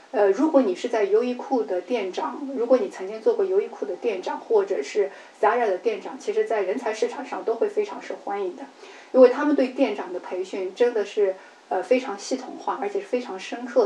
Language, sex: Chinese, female